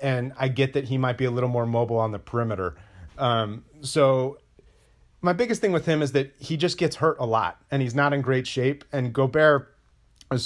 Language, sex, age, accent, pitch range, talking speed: English, male, 30-49, American, 120-145 Hz, 220 wpm